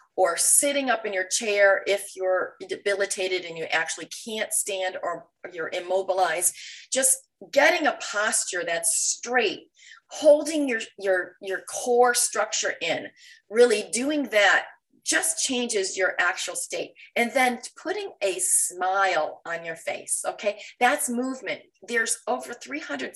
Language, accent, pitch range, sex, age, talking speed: English, American, 185-235 Hz, female, 30-49, 135 wpm